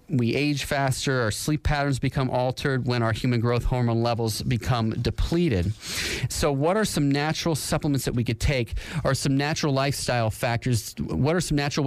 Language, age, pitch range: English, 30-49, 120-145 Hz